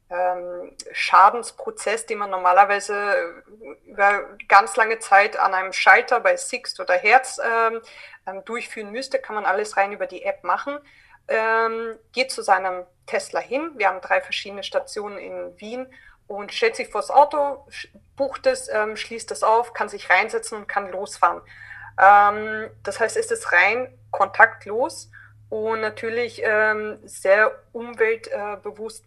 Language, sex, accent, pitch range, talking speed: German, female, German, 195-240 Hz, 140 wpm